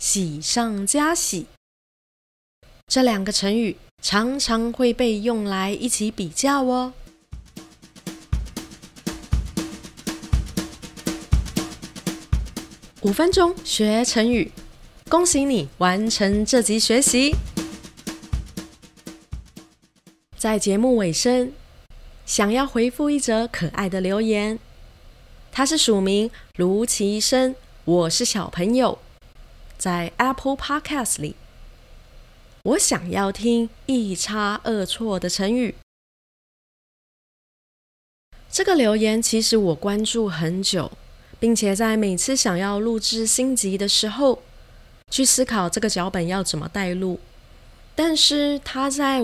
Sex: female